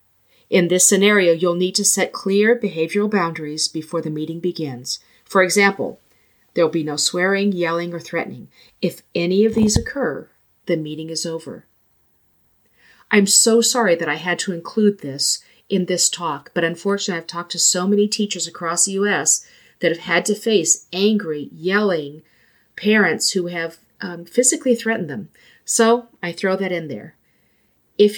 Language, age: English, 40-59